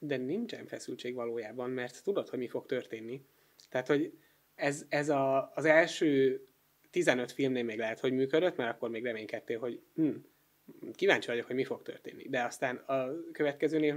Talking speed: 170 wpm